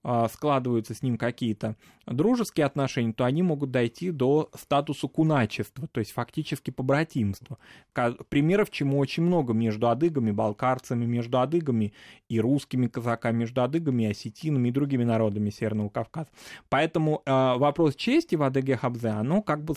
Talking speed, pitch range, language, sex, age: 145 wpm, 110-145 Hz, Russian, male, 20-39